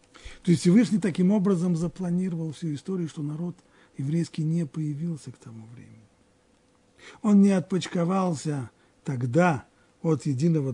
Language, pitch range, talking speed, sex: Russian, 120-165 Hz, 125 wpm, male